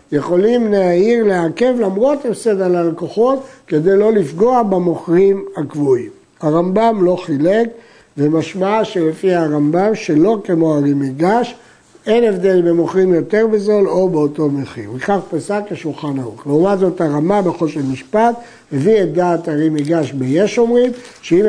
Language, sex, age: Hebrew, male, 60-79